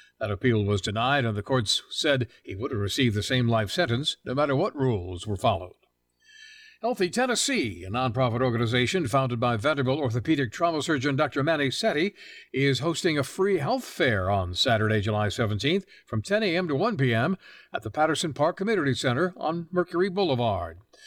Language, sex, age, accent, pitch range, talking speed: English, male, 60-79, American, 120-180 Hz, 175 wpm